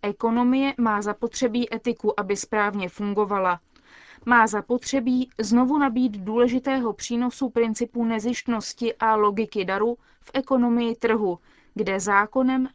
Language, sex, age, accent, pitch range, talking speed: Czech, female, 20-39, native, 205-245 Hz, 110 wpm